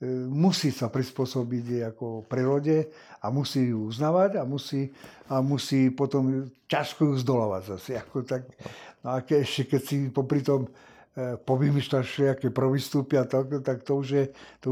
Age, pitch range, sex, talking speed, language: 60-79, 125-145 Hz, male, 145 wpm, Slovak